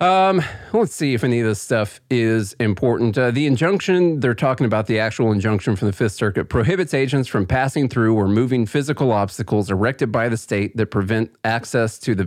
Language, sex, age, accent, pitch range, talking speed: English, male, 40-59, American, 100-130 Hz, 200 wpm